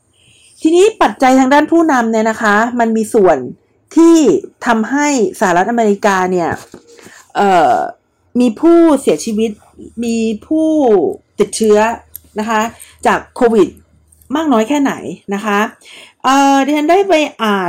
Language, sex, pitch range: Thai, female, 200-275 Hz